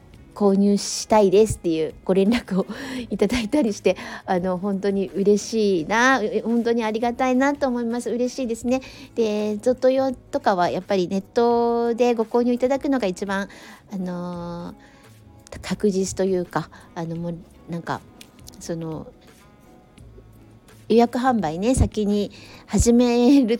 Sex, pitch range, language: female, 170-220 Hz, Japanese